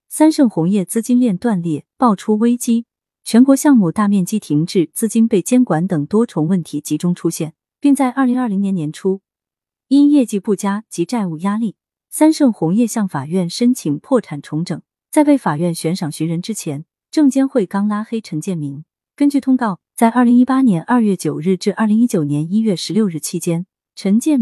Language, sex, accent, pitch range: Chinese, female, native, 165-240 Hz